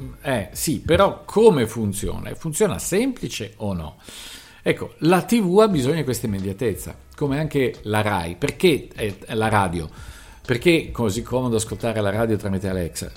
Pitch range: 100-145 Hz